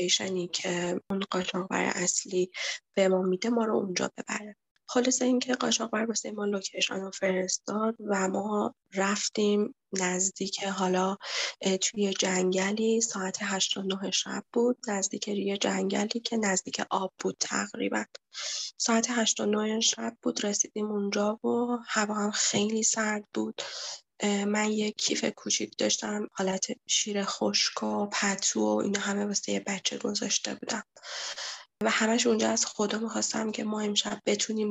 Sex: female